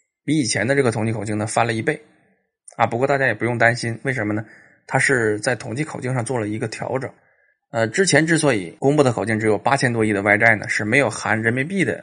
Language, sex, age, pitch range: Chinese, male, 20-39, 110-145 Hz